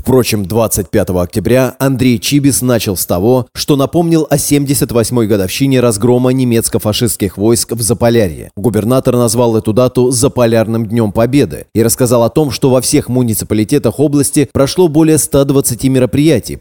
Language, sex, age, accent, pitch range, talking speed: Russian, male, 30-49, native, 110-140 Hz, 135 wpm